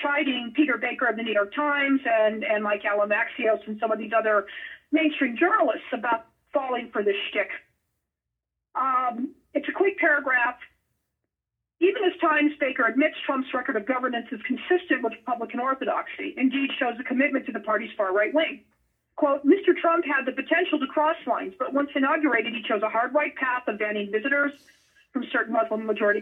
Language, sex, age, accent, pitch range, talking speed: English, female, 50-69, American, 230-300 Hz, 180 wpm